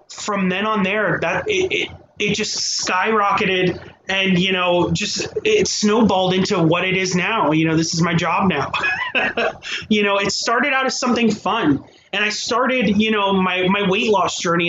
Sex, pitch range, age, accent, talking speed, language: male, 180-220 Hz, 30-49, American, 190 wpm, English